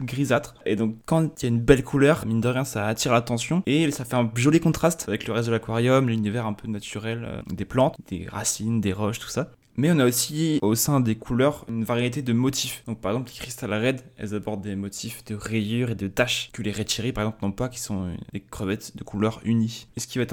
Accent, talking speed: French, 255 wpm